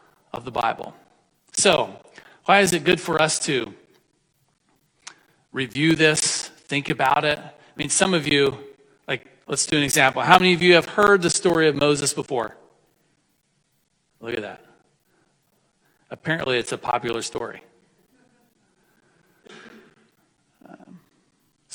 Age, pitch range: 40-59, 135-165 Hz